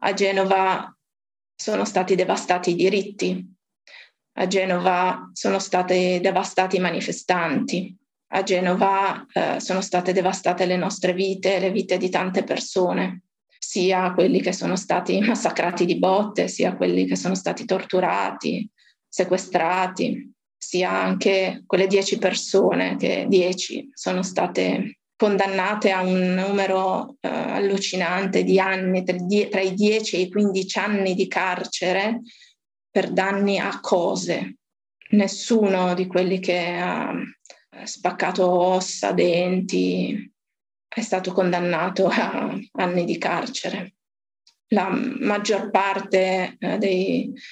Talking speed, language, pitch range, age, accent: 115 wpm, Italian, 180-200 Hz, 20-39, native